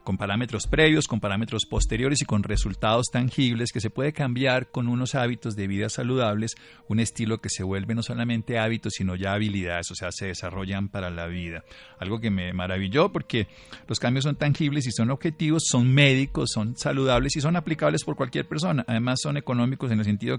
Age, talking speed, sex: 40-59, 195 wpm, male